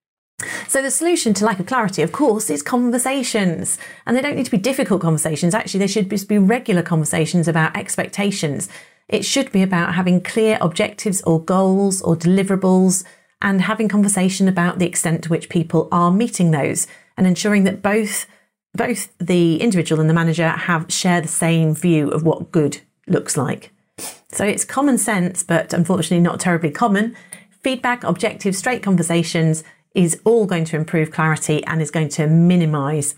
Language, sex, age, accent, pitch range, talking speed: English, female, 40-59, British, 165-205 Hz, 170 wpm